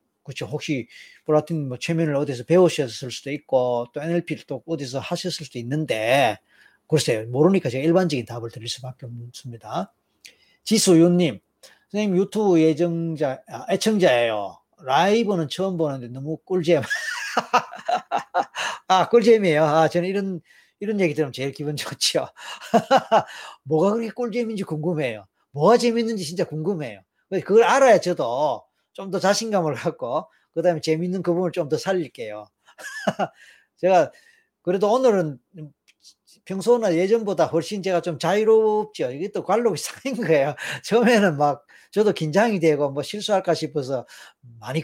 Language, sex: Korean, male